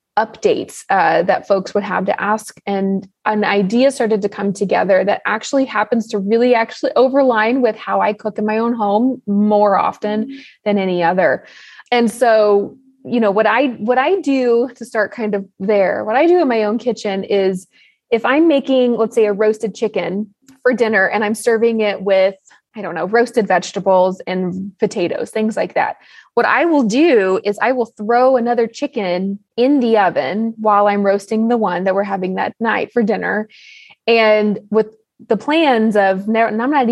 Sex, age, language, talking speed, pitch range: female, 20-39, English, 185 wpm, 200-240 Hz